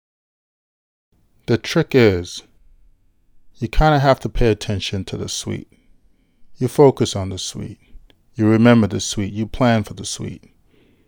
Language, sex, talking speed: English, male, 145 wpm